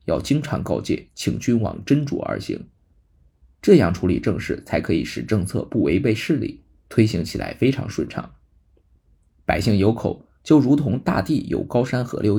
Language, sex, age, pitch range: Chinese, male, 20-39, 75-125 Hz